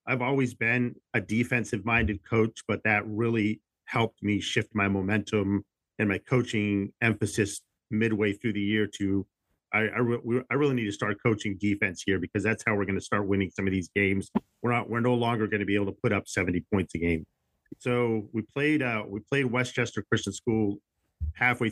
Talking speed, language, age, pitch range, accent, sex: 205 wpm, English, 40-59, 100-120 Hz, American, male